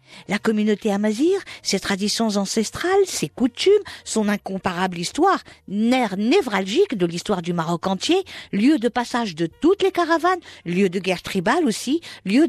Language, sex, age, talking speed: French, female, 50-69, 150 wpm